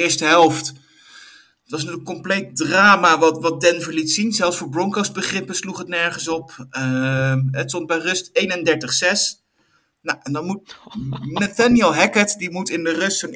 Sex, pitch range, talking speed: male, 150-190 Hz, 170 wpm